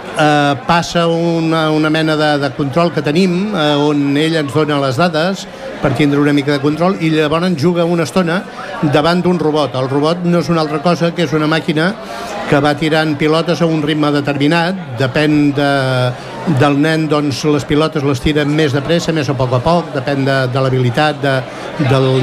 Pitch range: 150-180 Hz